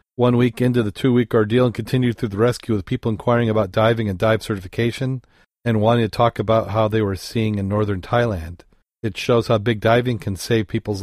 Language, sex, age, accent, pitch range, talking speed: English, male, 40-59, American, 100-115 Hz, 210 wpm